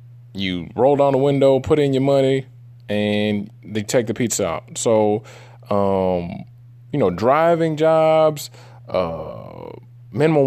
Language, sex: English, male